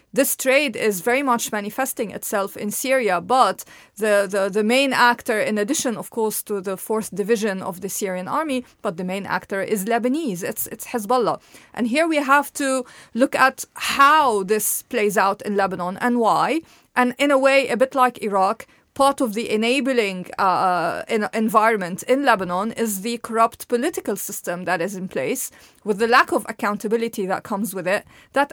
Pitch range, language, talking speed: 200-250 Hz, English, 180 wpm